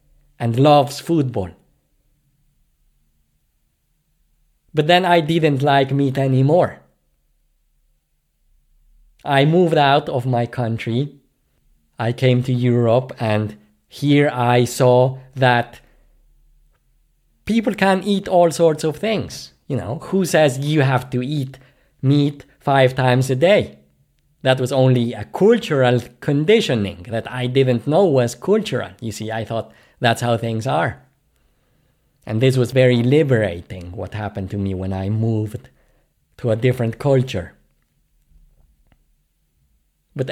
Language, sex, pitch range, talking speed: English, male, 115-145 Hz, 120 wpm